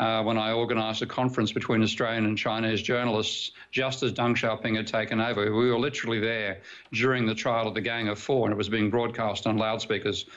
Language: English